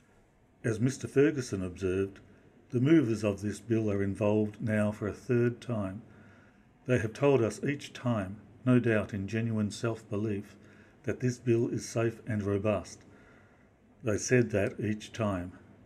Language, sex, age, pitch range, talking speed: English, male, 60-79, 105-120 Hz, 150 wpm